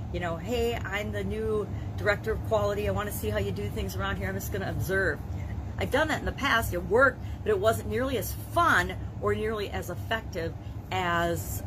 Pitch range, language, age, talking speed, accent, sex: 95-105 Hz, English, 40-59, 215 wpm, American, female